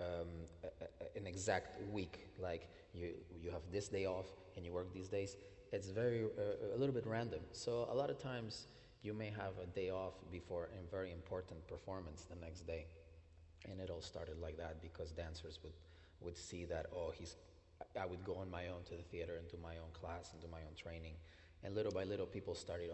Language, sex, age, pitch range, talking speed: English, male, 30-49, 85-95 Hz, 210 wpm